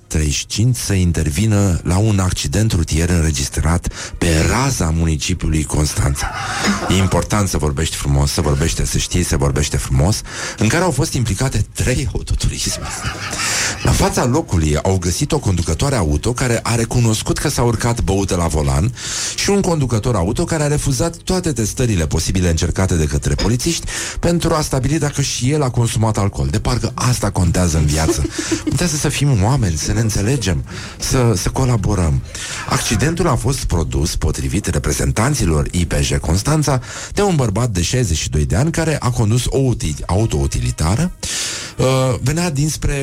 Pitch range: 90-135 Hz